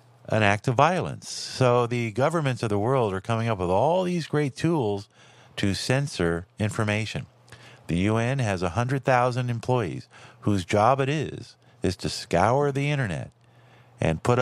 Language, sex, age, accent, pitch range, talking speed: English, male, 50-69, American, 95-125 Hz, 155 wpm